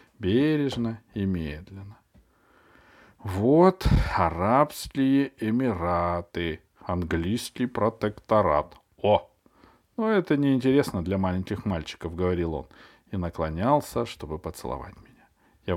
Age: 40-59